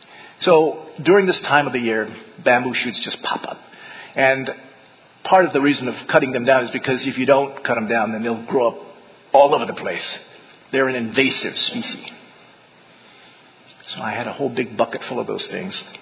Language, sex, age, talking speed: English, male, 50-69, 195 wpm